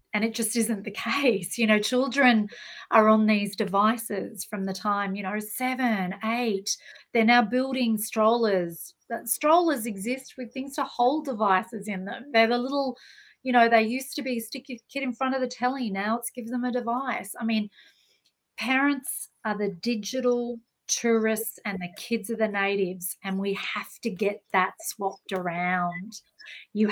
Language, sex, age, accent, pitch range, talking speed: English, female, 40-59, Australian, 210-250 Hz, 175 wpm